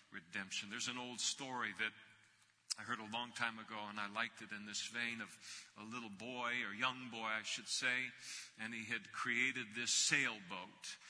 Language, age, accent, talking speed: English, 50-69, American, 190 wpm